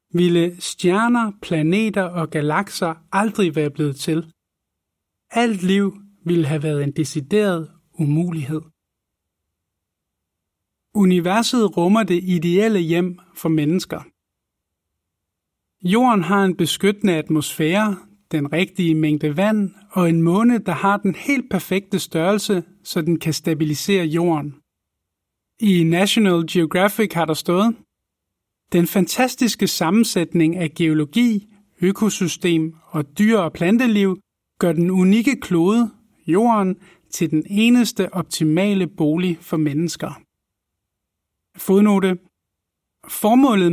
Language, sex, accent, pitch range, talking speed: Danish, male, native, 155-195 Hz, 105 wpm